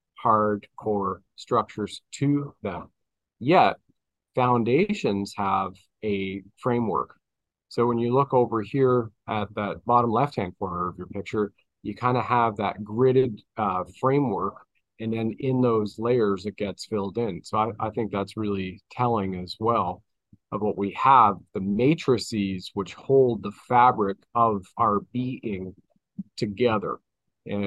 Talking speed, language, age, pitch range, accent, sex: 140 wpm, English, 40-59, 100-120 Hz, American, male